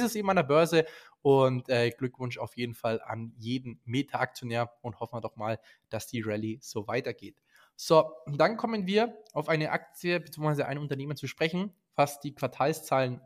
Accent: German